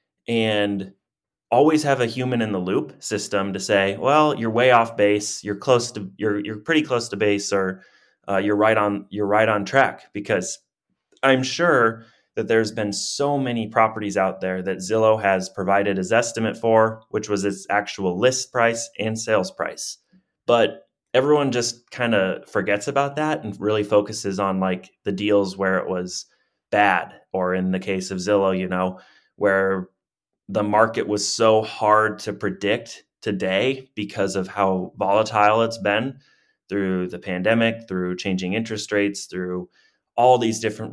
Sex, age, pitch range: male, 20-39, 95-115 Hz